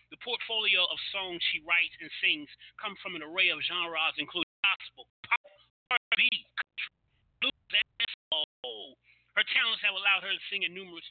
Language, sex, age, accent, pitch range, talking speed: English, male, 30-49, American, 170-220 Hz, 170 wpm